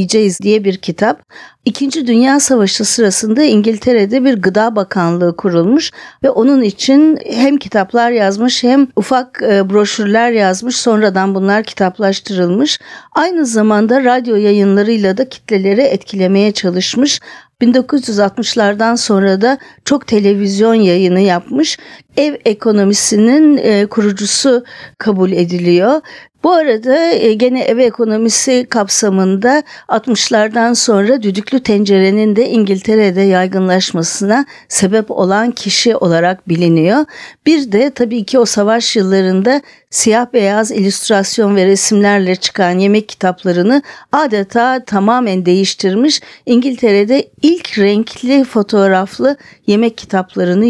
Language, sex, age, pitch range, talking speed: Turkish, female, 50-69, 195-245 Hz, 105 wpm